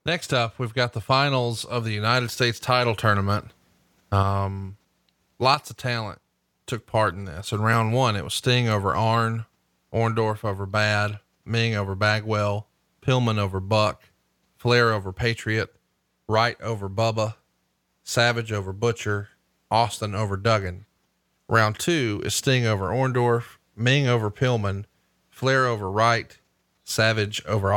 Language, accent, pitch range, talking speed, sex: English, American, 105-125 Hz, 135 wpm, male